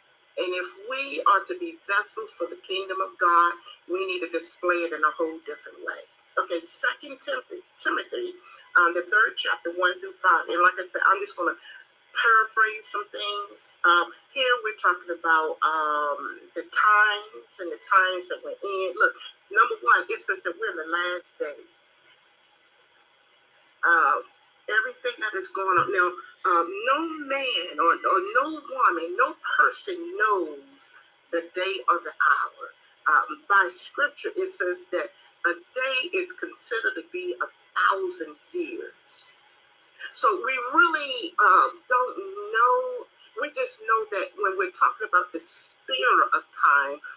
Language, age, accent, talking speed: English, 40-59, American, 160 wpm